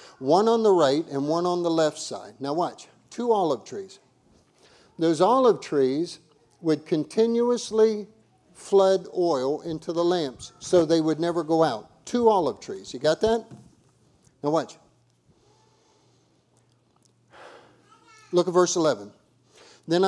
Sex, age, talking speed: male, 50-69, 130 wpm